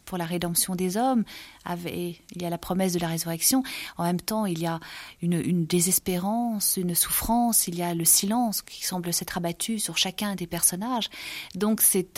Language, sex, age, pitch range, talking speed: French, female, 40-59, 185-240 Hz, 195 wpm